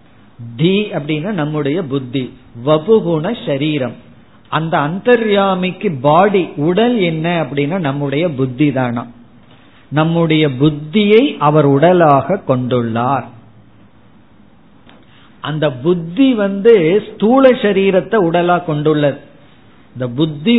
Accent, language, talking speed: native, Tamil, 65 wpm